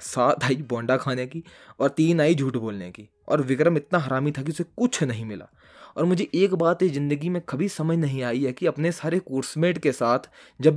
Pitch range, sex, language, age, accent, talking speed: 125-155 Hz, male, Hindi, 20-39, native, 215 wpm